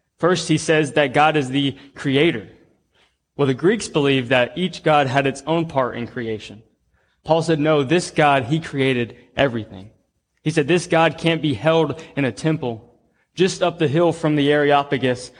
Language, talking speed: English, 180 wpm